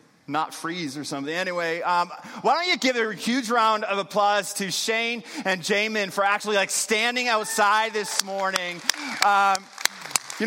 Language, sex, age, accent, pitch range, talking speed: English, male, 30-49, American, 200-235 Hz, 155 wpm